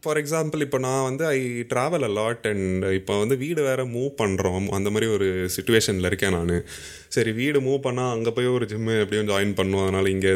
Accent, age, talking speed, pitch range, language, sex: native, 20-39, 195 wpm, 95-125 Hz, Tamil, male